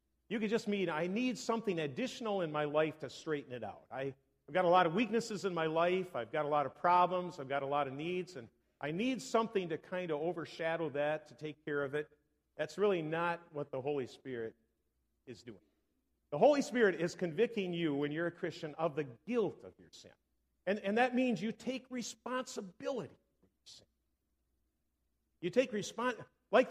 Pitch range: 135-210 Hz